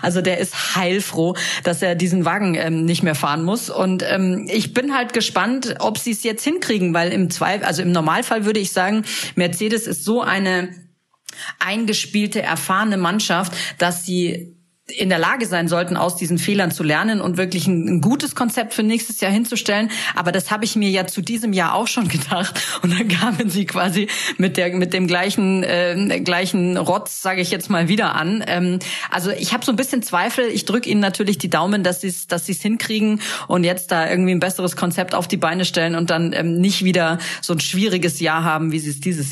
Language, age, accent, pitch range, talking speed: German, 40-59, German, 175-215 Hz, 210 wpm